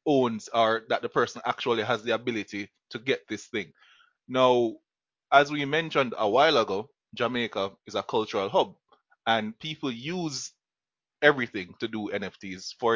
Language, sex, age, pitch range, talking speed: English, male, 20-39, 115-140 Hz, 155 wpm